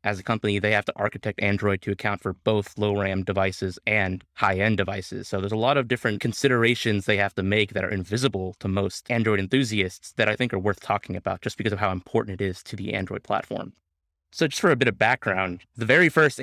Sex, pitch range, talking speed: male, 95-115 Hz, 235 wpm